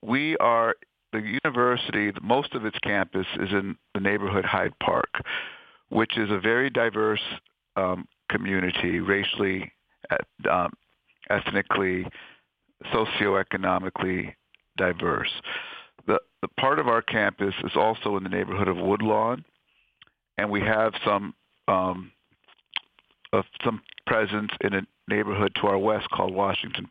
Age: 50-69